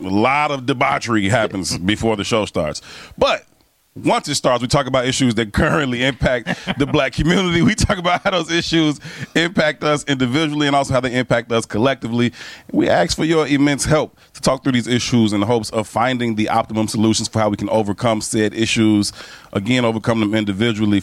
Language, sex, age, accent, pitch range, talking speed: English, male, 30-49, American, 110-140 Hz, 195 wpm